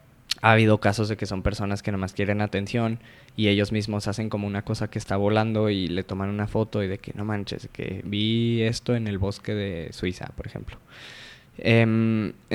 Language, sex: Spanish, male